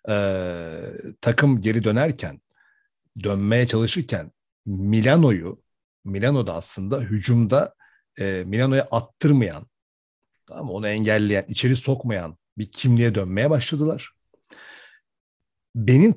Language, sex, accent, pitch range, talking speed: Turkish, male, native, 110-155 Hz, 90 wpm